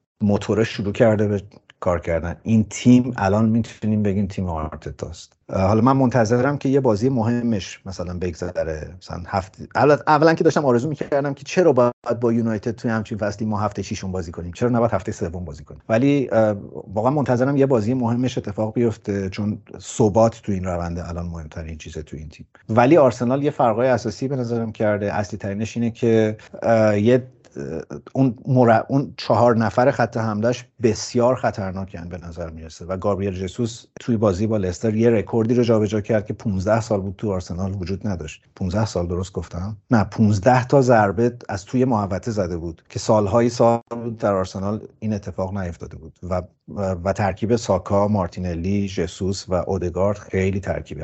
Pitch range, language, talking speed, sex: 95-120 Hz, Persian, 175 wpm, male